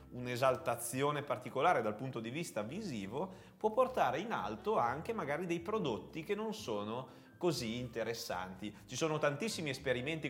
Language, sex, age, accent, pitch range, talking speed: Italian, male, 30-49, native, 115-155 Hz, 140 wpm